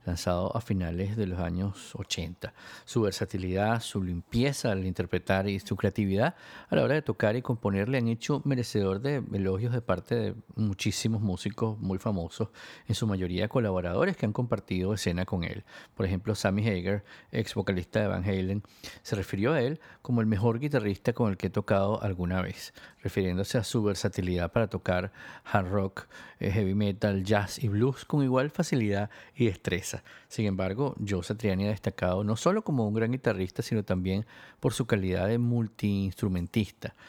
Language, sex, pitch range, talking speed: Spanish, male, 95-120 Hz, 175 wpm